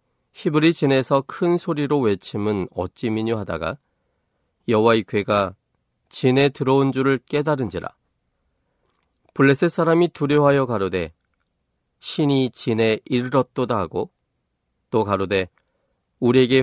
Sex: male